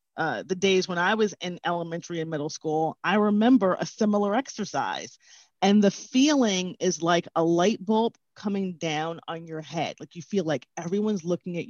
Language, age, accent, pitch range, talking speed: English, 40-59, American, 170-220 Hz, 185 wpm